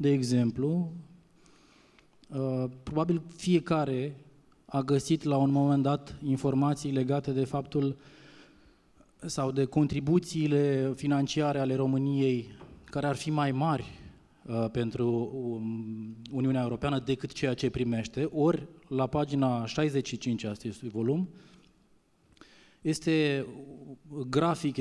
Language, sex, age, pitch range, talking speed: Romanian, male, 20-39, 125-145 Hz, 95 wpm